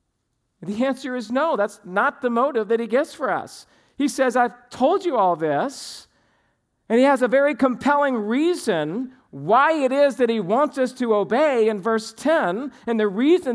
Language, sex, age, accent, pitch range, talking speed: English, male, 50-69, American, 205-260 Hz, 185 wpm